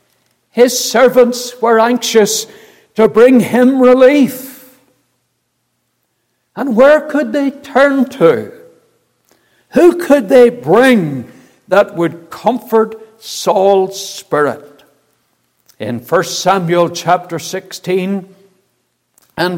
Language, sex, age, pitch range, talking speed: English, male, 60-79, 175-250 Hz, 90 wpm